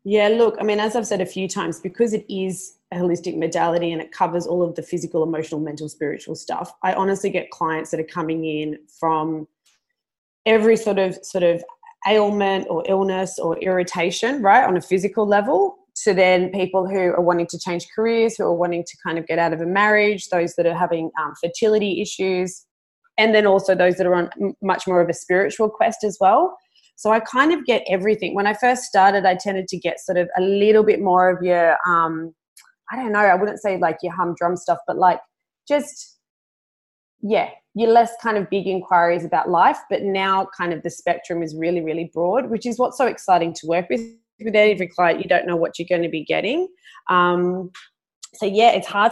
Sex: female